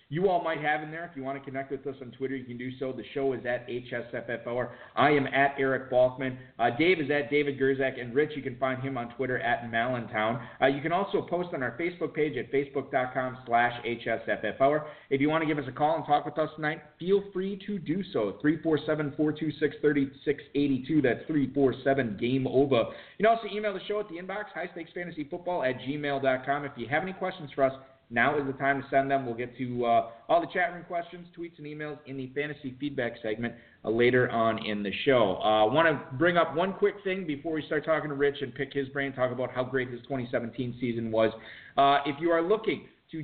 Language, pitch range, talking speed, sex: English, 125-155 Hz, 225 wpm, male